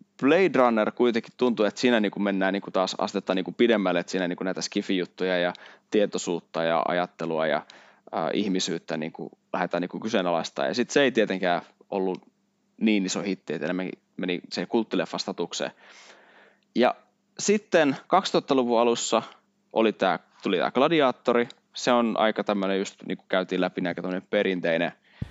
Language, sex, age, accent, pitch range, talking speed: Finnish, male, 20-39, native, 95-120 Hz, 145 wpm